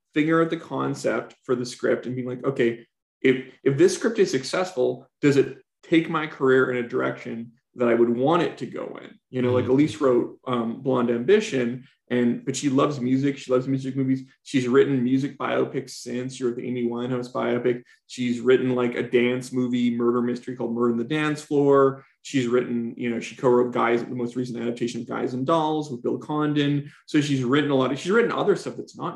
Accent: American